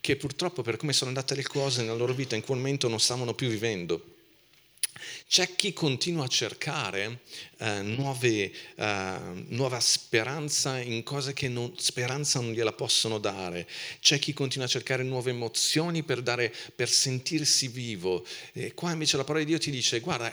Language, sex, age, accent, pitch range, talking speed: Italian, male, 40-59, native, 110-140 Hz, 165 wpm